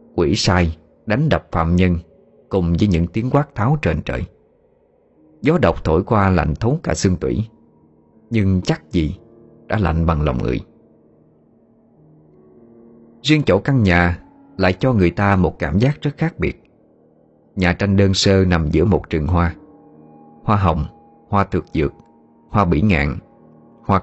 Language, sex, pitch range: Vietnamese, male, 80-110 Hz